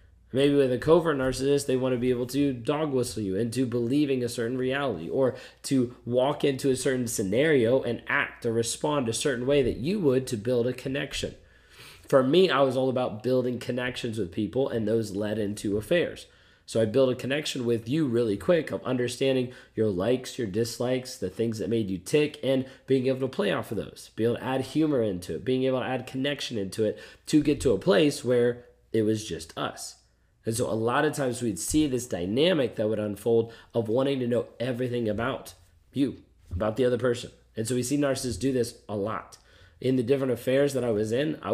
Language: English